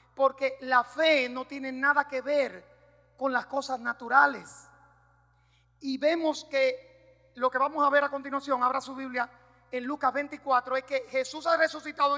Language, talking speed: Spanish, 165 wpm